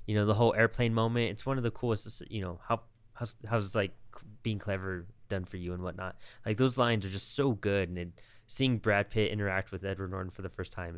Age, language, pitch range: 20-39, English, 95-115 Hz